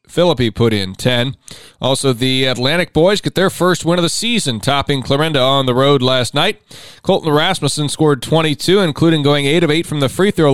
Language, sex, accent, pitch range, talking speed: English, male, American, 120-155 Hz, 200 wpm